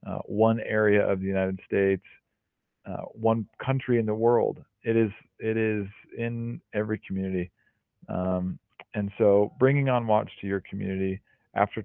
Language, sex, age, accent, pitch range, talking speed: English, male, 40-59, American, 100-115 Hz, 145 wpm